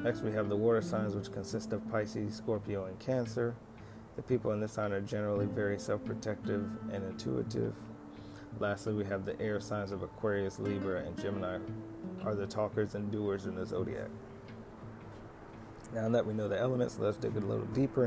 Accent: American